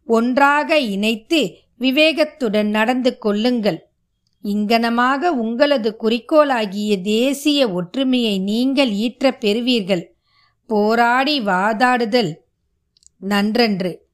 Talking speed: 70 wpm